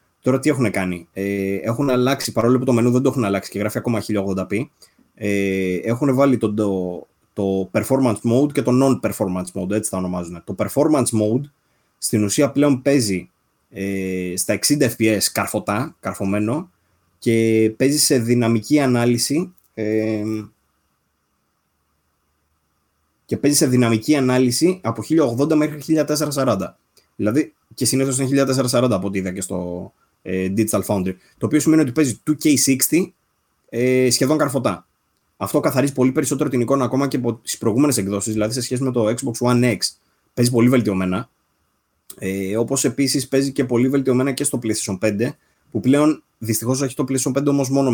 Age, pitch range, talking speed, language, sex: 20-39, 100-135 Hz, 155 wpm, Greek, male